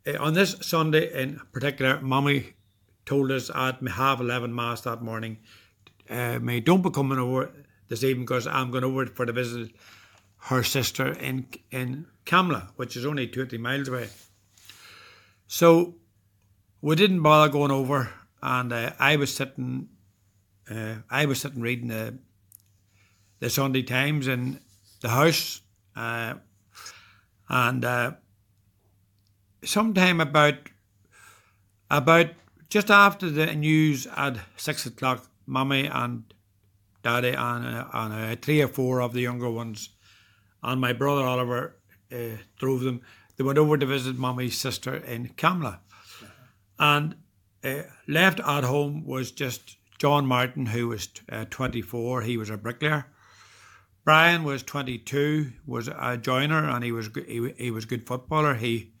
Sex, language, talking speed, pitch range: male, English, 140 wpm, 110-140 Hz